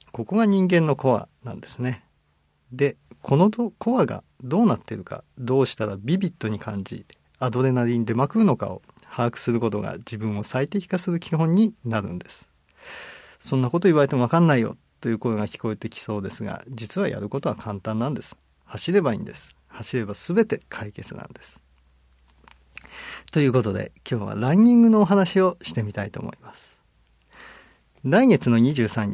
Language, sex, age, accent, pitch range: Japanese, male, 50-69, native, 105-150 Hz